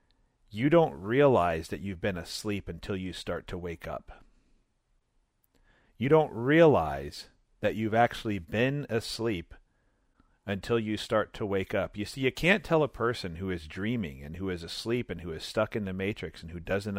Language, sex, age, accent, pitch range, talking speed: English, male, 40-59, American, 95-120 Hz, 180 wpm